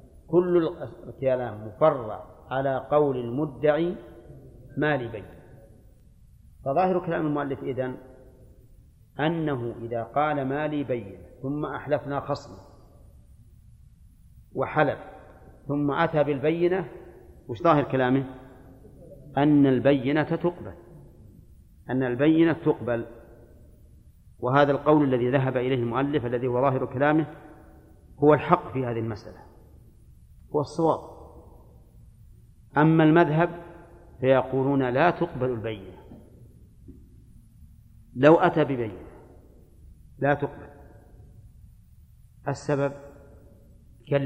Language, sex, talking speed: Arabic, male, 85 wpm